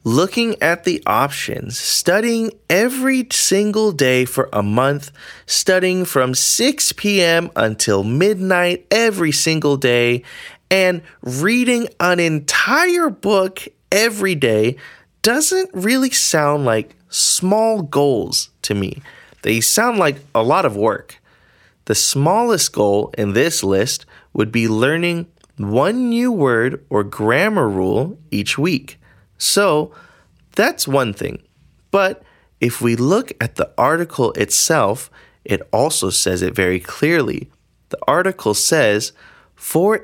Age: 30-49